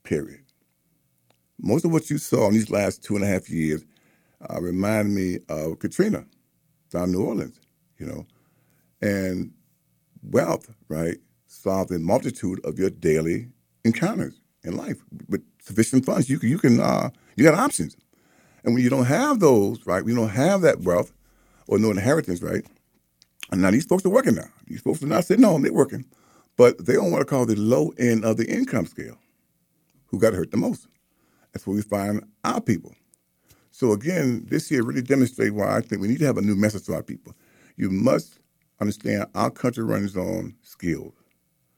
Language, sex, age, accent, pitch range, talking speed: English, male, 50-69, American, 85-125 Hz, 185 wpm